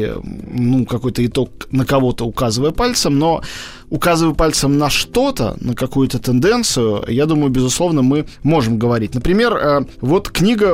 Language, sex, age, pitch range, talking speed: Russian, male, 20-39, 125-165 Hz, 135 wpm